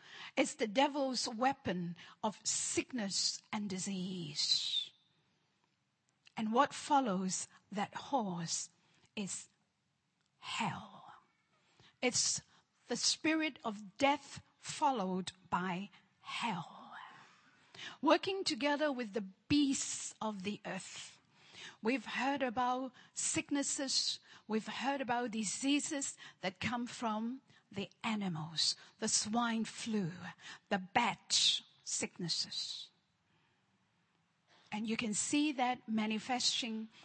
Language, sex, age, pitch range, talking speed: English, female, 50-69, 190-280 Hz, 90 wpm